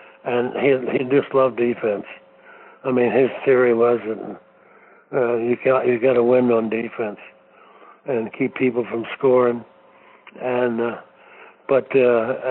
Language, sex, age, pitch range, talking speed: English, male, 60-79, 130-155 Hz, 145 wpm